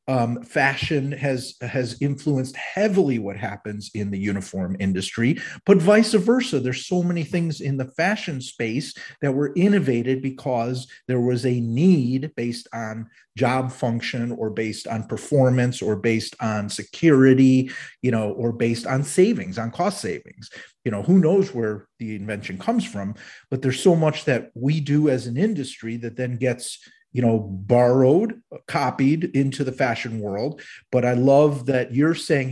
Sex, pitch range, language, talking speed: male, 115-150 Hz, English, 160 wpm